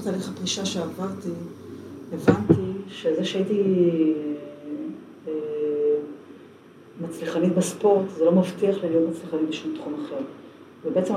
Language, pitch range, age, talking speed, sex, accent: Hebrew, 165-220 Hz, 40-59, 90 wpm, female, native